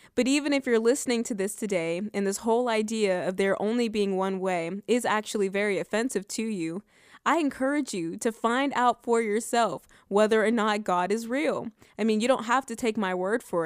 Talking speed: 210 wpm